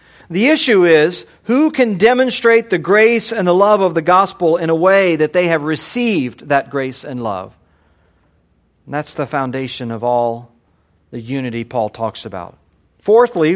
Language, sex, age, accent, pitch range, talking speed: English, male, 50-69, American, 140-225 Hz, 165 wpm